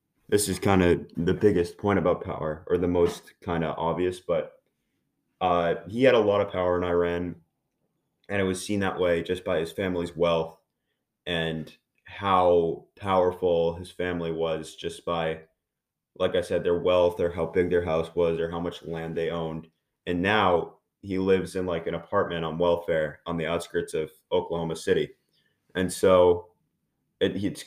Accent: American